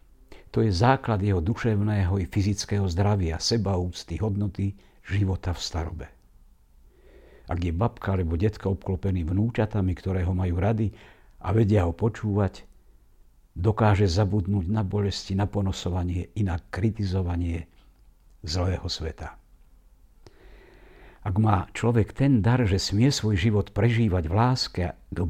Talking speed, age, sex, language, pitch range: 125 wpm, 60-79, male, Slovak, 90-105 Hz